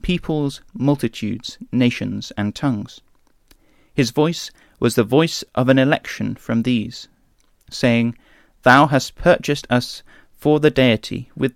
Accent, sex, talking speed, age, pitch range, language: British, male, 125 wpm, 30-49, 115-145 Hz, English